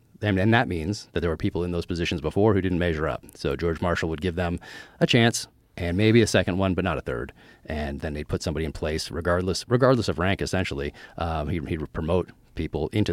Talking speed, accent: 230 wpm, American